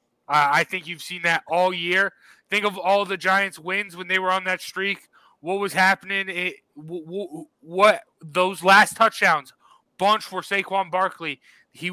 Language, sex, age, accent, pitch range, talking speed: English, male, 20-39, American, 165-190 Hz, 170 wpm